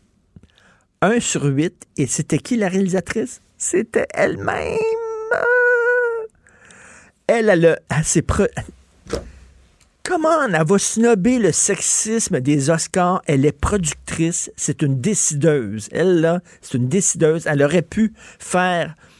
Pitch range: 115-180 Hz